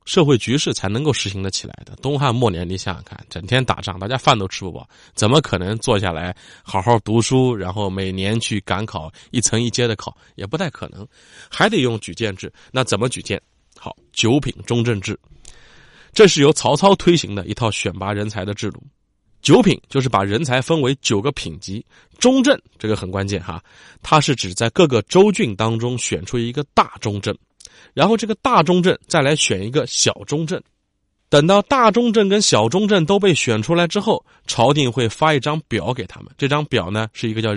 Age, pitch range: 20-39, 105-150 Hz